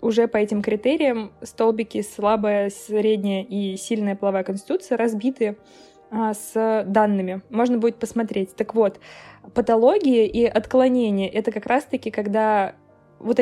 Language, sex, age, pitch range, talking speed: Russian, female, 20-39, 210-240 Hz, 120 wpm